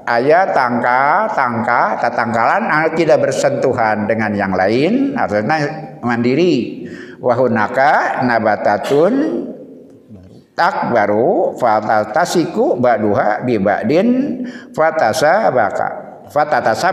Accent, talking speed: native, 80 wpm